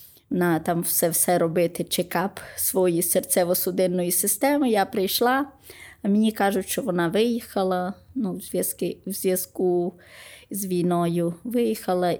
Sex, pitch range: female, 175-205 Hz